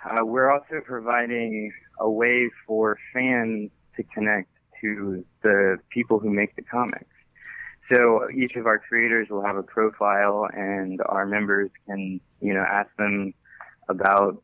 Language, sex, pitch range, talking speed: English, male, 100-115 Hz, 145 wpm